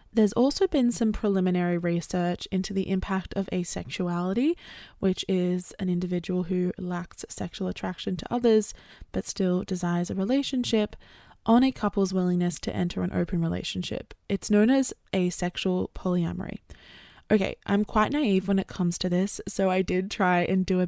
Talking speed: 160 wpm